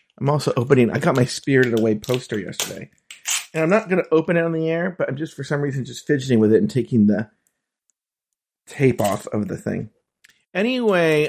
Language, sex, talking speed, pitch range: English, male, 205 wpm, 115-165 Hz